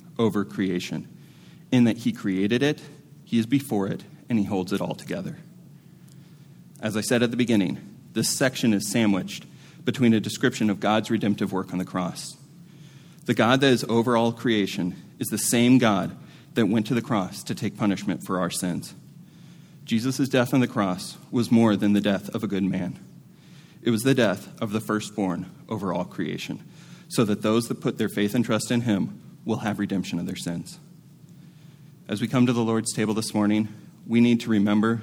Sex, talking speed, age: male, 195 wpm, 30-49